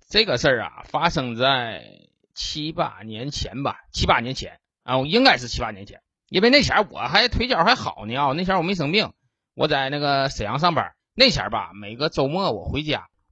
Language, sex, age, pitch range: Chinese, male, 20-39, 125-175 Hz